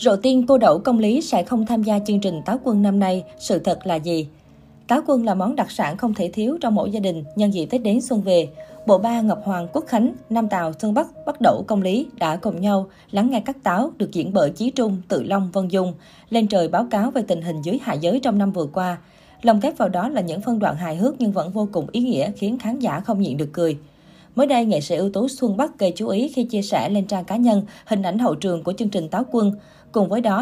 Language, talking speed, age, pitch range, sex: Vietnamese, 270 wpm, 20-39, 180-235 Hz, female